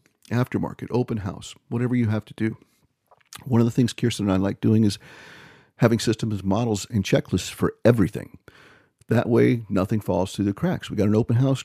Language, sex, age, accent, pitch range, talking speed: English, male, 50-69, American, 100-125 Hz, 190 wpm